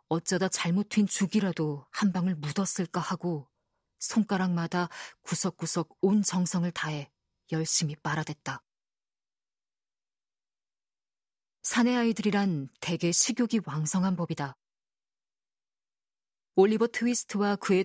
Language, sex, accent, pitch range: Korean, female, native, 170-210 Hz